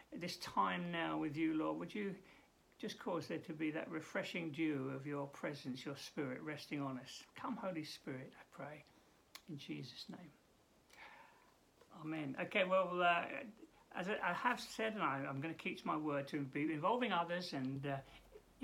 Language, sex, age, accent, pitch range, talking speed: English, male, 60-79, British, 155-225 Hz, 170 wpm